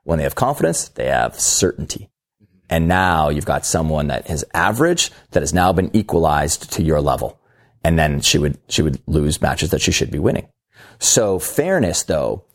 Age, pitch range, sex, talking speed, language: 30-49, 85-105 Hz, male, 185 wpm, English